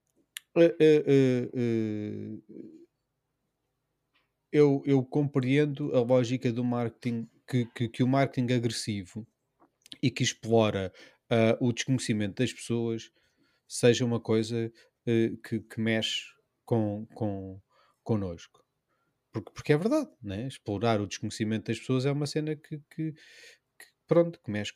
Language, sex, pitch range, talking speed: Portuguese, male, 115-135 Hz, 120 wpm